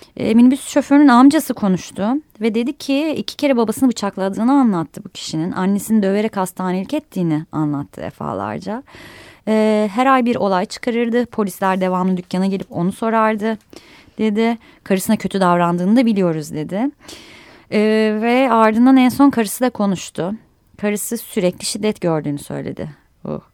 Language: Turkish